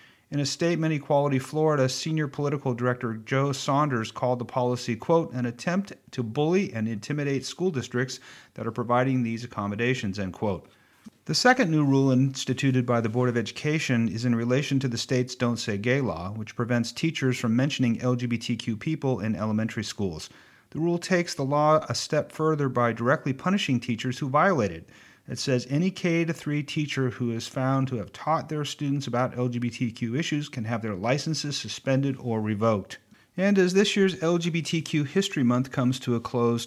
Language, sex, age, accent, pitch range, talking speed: English, male, 40-59, American, 115-150 Hz, 175 wpm